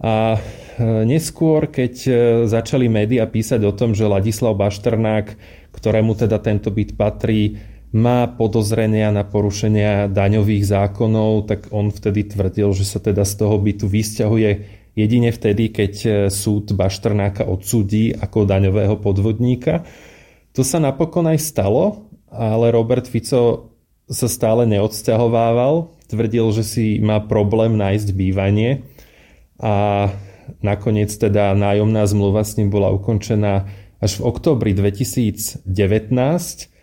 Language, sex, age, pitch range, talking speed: Slovak, male, 20-39, 100-115 Hz, 120 wpm